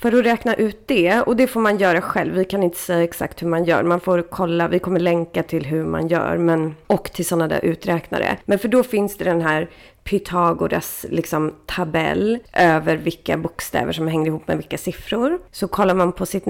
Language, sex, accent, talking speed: Swedish, female, native, 210 wpm